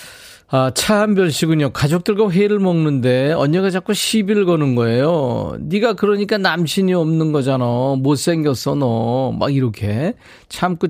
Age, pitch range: 40-59, 120-175 Hz